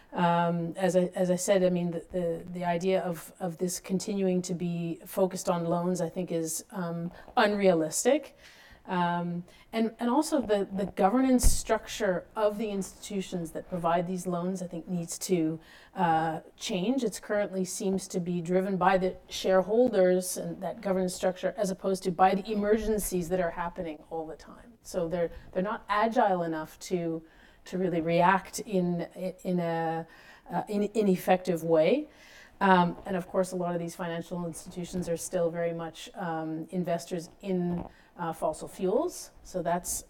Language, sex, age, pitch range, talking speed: English, female, 30-49, 175-200 Hz, 170 wpm